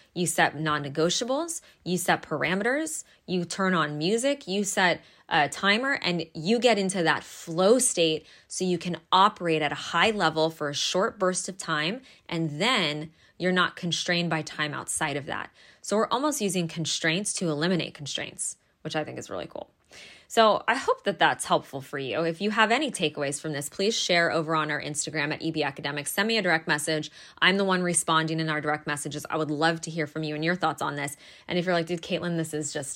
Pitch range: 155-210 Hz